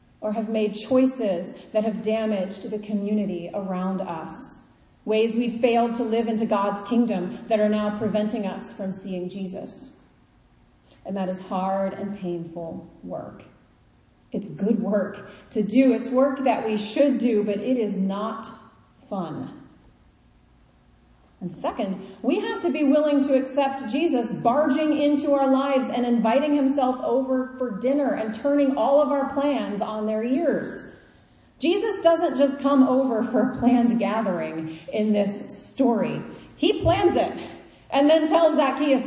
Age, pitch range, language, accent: 40-59, 210-280 Hz, English, American